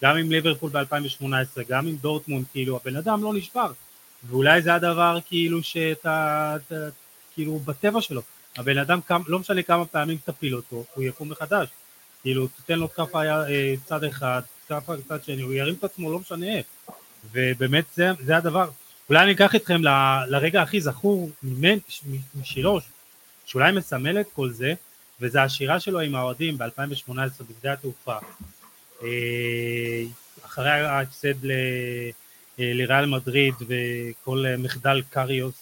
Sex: male